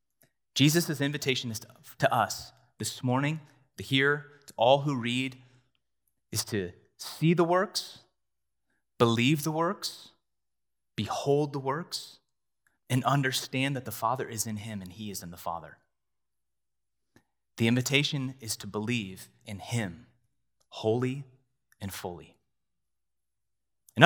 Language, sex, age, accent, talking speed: English, male, 30-49, American, 125 wpm